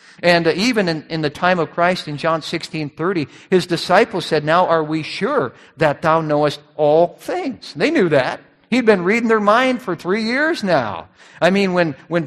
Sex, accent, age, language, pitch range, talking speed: male, American, 50-69, English, 160-210 Hz, 190 wpm